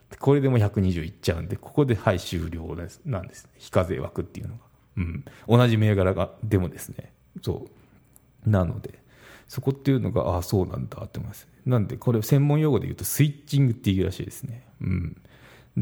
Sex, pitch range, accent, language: male, 95-130 Hz, native, Japanese